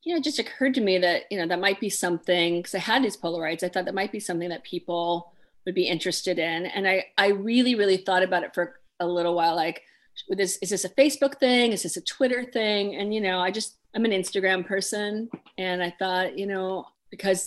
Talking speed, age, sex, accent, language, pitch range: 235 wpm, 40-59, female, American, English, 175-225 Hz